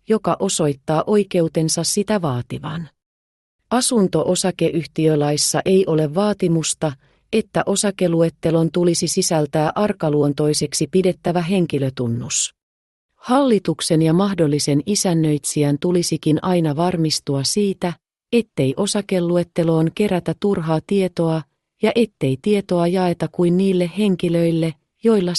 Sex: female